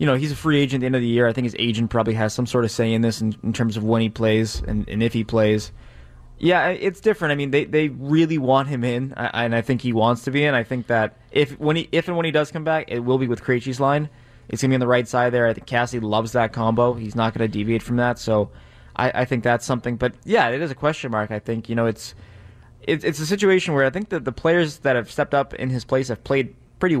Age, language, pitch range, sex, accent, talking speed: 20-39, English, 115-140 Hz, male, American, 300 wpm